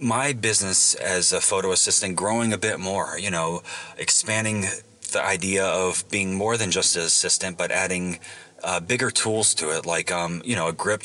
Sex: male